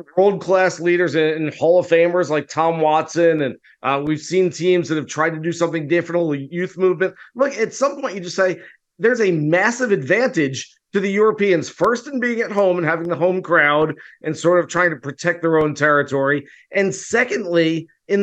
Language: English